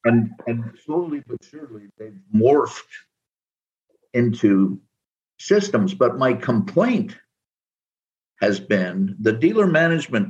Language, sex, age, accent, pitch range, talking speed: English, male, 50-69, American, 115-165 Hz, 100 wpm